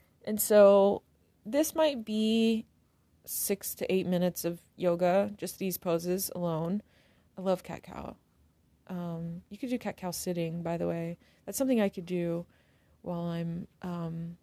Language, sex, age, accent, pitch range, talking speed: English, female, 20-39, American, 170-195 Hz, 140 wpm